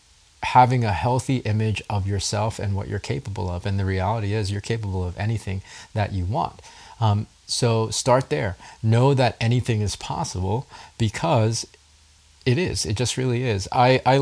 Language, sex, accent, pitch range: English, male, American, 100-120 Hz